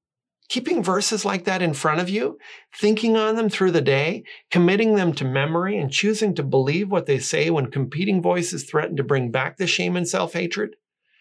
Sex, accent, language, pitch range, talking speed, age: male, American, English, 140-175 Hz, 195 wpm, 40-59